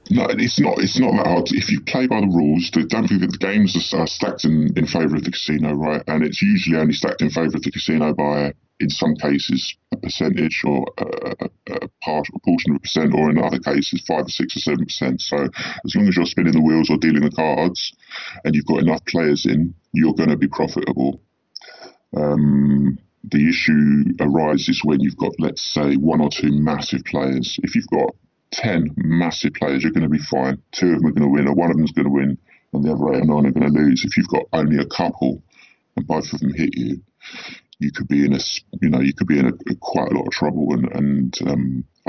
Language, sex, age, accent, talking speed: English, female, 40-59, British, 240 wpm